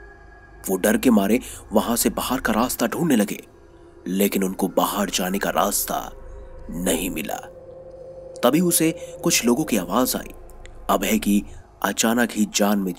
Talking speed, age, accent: 115 wpm, 30-49, native